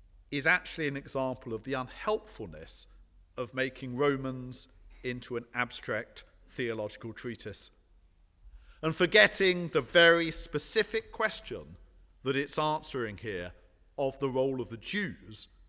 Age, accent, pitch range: 50-69, British, 100-160 Hz